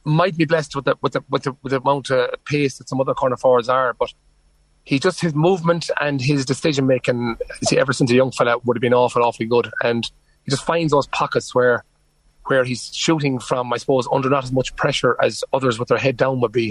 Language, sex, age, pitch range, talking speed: English, male, 30-49, 120-150 Hz, 240 wpm